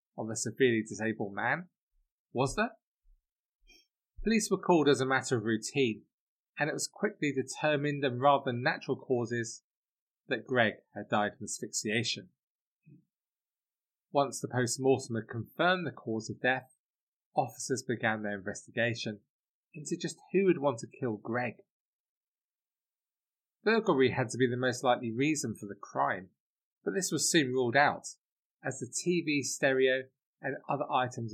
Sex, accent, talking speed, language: male, British, 145 wpm, English